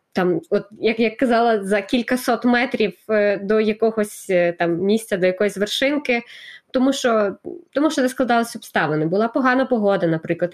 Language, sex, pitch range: Ukrainian, female, 205-255 Hz